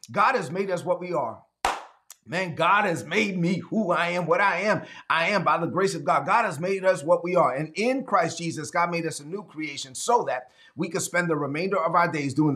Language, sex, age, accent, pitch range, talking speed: English, male, 30-49, American, 150-180 Hz, 255 wpm